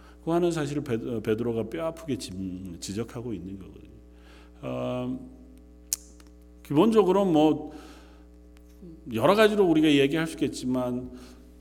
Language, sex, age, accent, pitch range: Korean, male, 40-59, native, 95-135 Hz